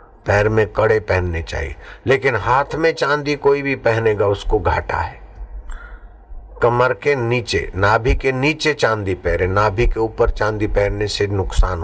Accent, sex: native, male